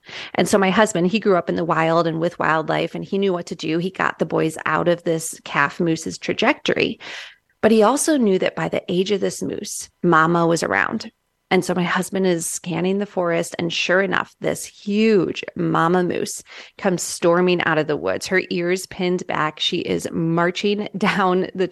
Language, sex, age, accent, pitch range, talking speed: English, female, 30-49, American, 170-205 Hz, 200 wpm